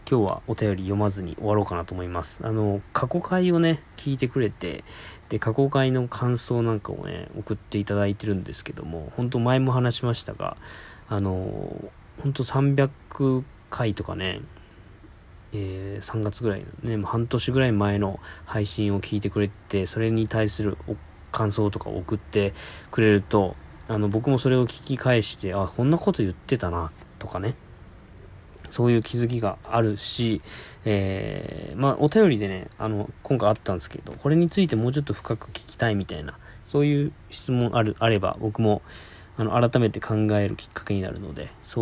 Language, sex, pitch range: Japanese, male, 95-120 Hz